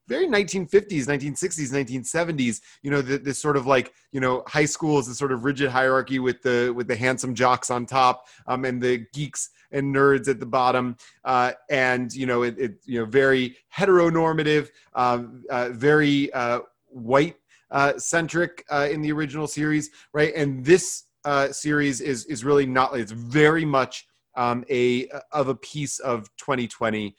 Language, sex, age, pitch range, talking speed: English, male, 30-49, 125-145 Hz, 180 wpm